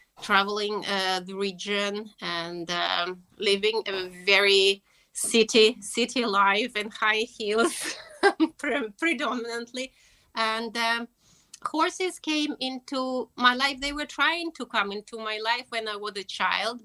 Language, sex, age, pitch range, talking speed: Hungarian, female, 30-49, 200-235 Hz, 130 wpm